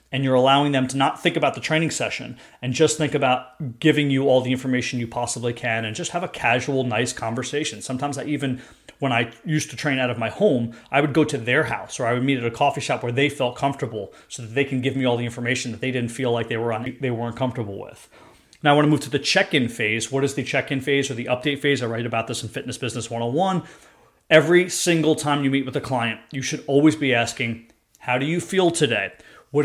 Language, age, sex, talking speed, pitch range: English, 30-49, male, 255 wpm, 120-150 Hz